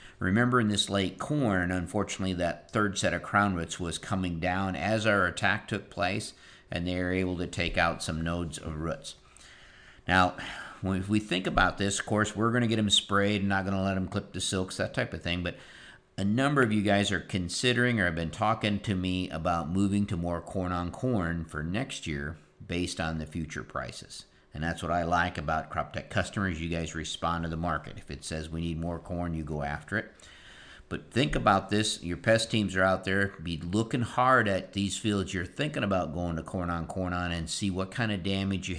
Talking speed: 225 wpm